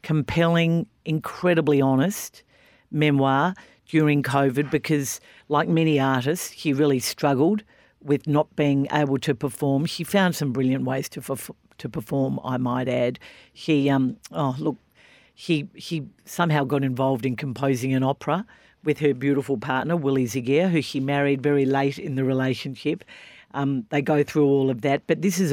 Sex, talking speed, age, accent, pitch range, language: female, 160 wpm, 50-69, Australian, 135-160 Hz, English